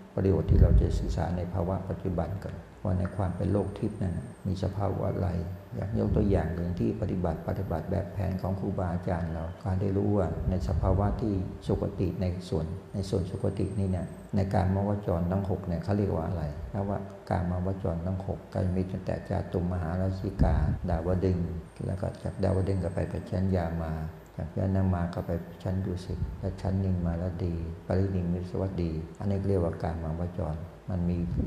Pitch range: 85-95 Hz